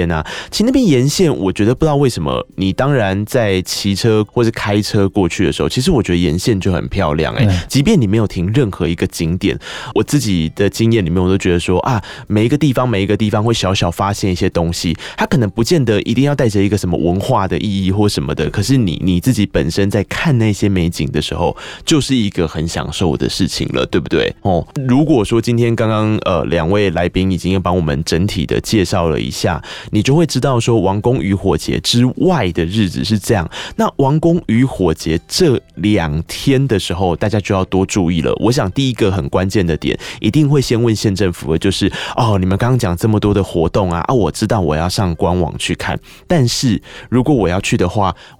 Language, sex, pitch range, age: Chinese, male, 90-125 Hz, 20-39